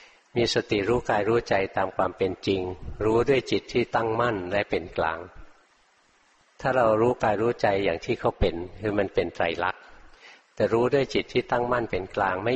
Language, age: Thai, 60-79